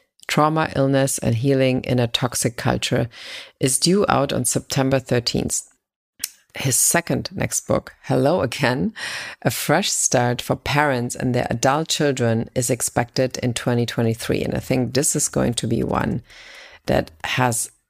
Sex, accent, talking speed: female, German, 150 wpm